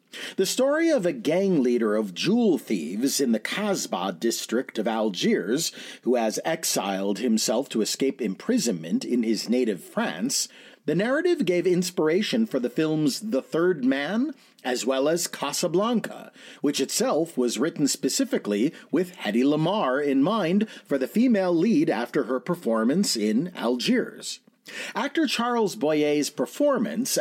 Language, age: English, 40-59